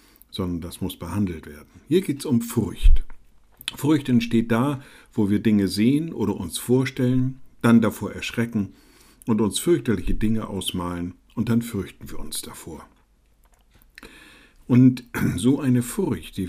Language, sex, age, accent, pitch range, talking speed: German, male, 60-79, German, 95-120 Hz, 140 wpm